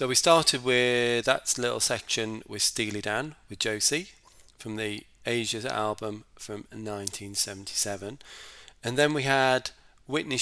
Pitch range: 105-120 Hz